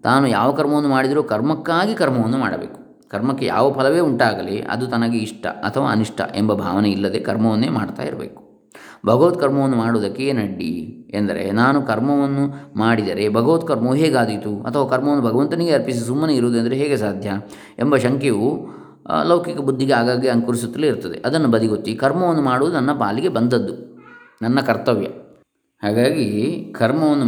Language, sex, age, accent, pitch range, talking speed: Kannada, male, 20-39, native, 105-135 Hz, 125 wpm